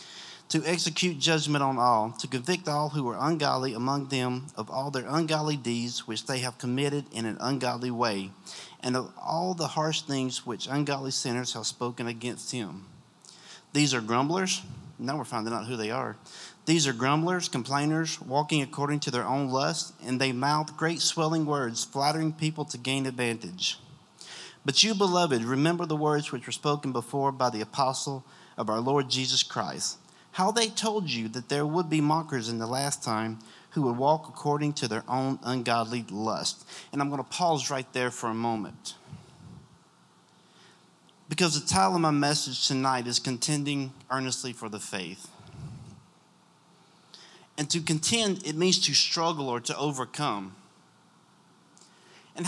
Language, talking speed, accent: English, 165 wpm, American